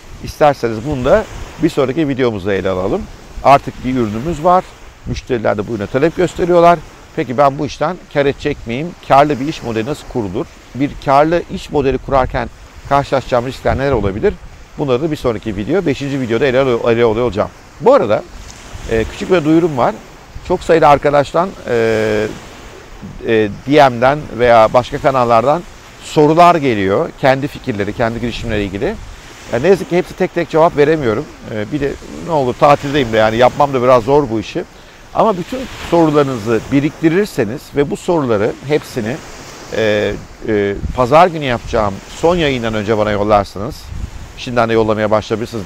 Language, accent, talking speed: Turkish, native, 160 wpm